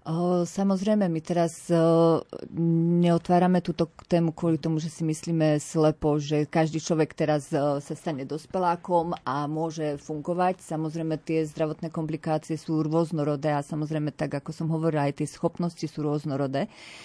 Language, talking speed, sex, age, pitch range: Slovak, 135 wpm, female, 40-59, 155-180 Hz